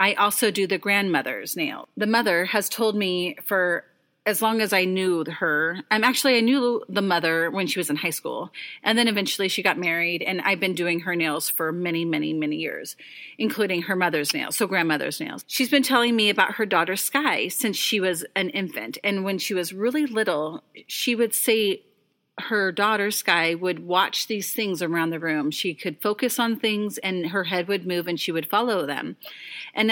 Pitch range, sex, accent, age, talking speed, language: 175-220 Hz, female, American, 30-49, 205 wpm, English